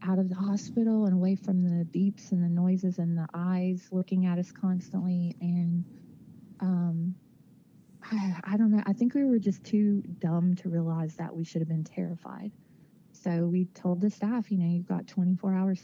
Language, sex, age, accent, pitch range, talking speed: English, female, 30-49, American, 170-190 Hz, 195 wpm